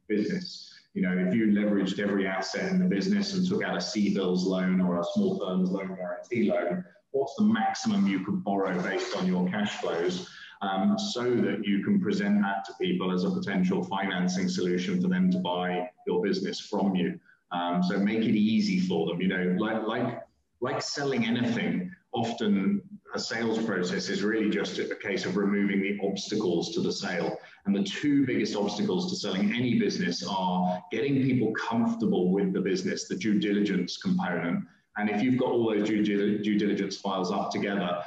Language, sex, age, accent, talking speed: English, male, 30-49, British, 190 wpm